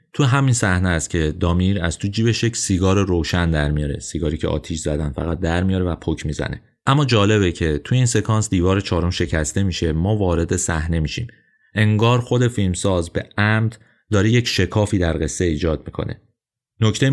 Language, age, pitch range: Persian, 30-49, 85-110 Hz